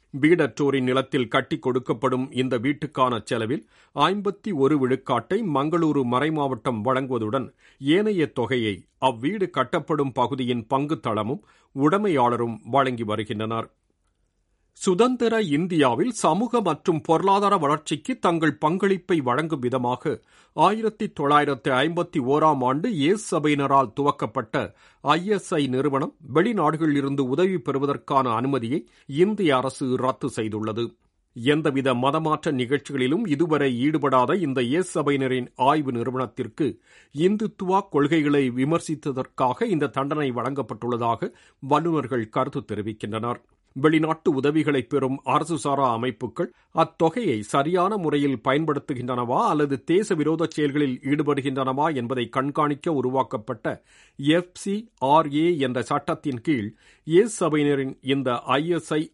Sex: male